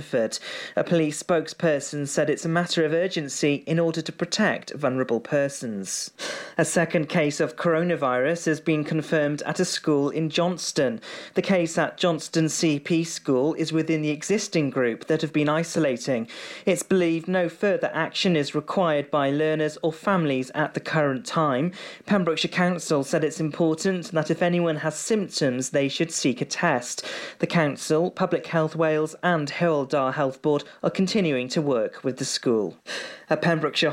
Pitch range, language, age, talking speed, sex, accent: 145-175 Hz, English, 40-59, 165 wpm, male, British